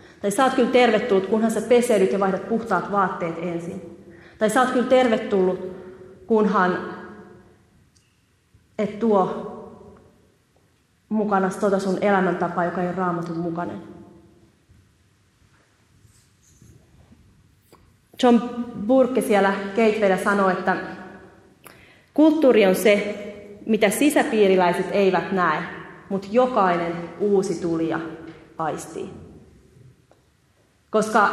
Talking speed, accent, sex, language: 95 wpm, native, female, Finnish